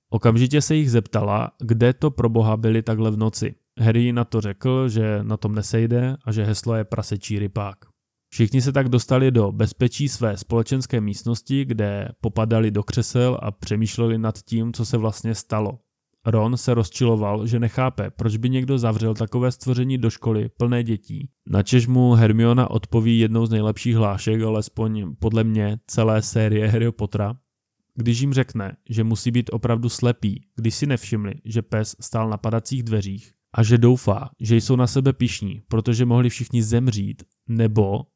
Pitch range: 110-120 Hz